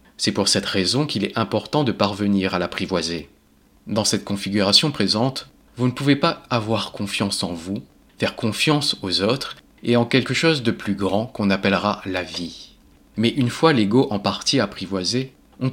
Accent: French